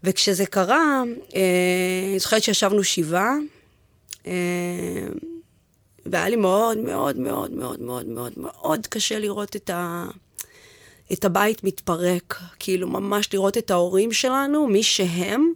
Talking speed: 120 wpm